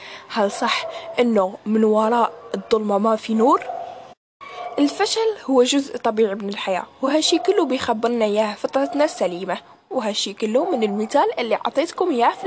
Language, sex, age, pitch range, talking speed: Arabic, female, 10-29, 210-275 Hz, 140 wpm